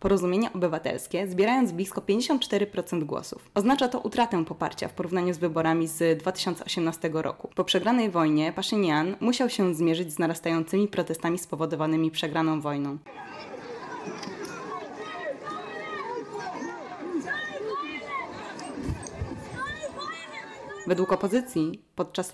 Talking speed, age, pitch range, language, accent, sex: 90 wpm, 20-39, 165-205 Hz, Polish, native, female